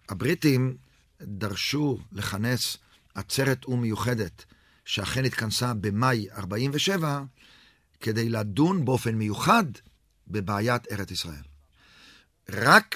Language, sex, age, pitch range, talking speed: Hebrew, male, 50-69, 100-145 Hz, 85 wpm